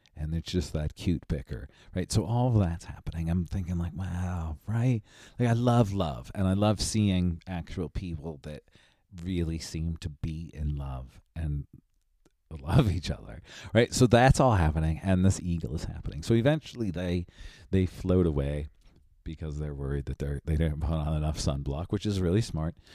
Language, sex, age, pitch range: English, male, 40-59, 75-95 Hz